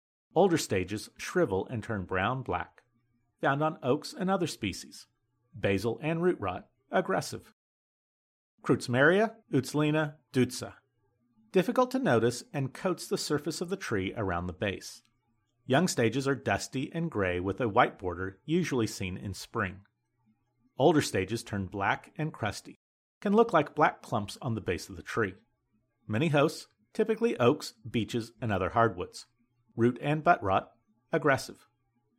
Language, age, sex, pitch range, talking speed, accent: English, 40-59, male, 110-160 Hz, 145 wpm, American